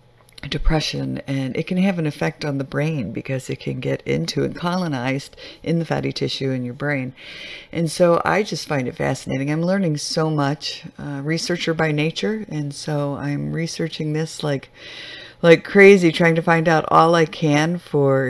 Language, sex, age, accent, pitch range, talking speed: English, female, 50-69, American, 140-170 Hz, 180 wpm